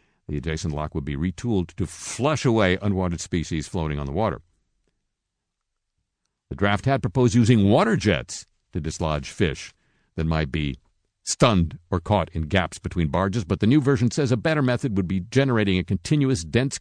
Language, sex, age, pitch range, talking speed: English, male, 50-69, 75-105 Hz, 175 wpm